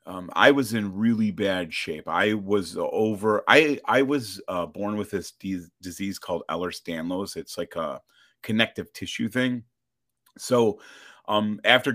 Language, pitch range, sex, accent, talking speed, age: English, 90-125 Hz, male, American, 145 wpm, 30-49